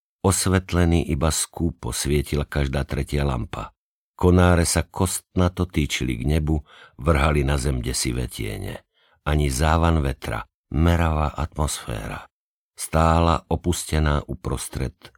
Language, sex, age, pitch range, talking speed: Slovak, male, 50-69, 70-85 Hz, 100 wpm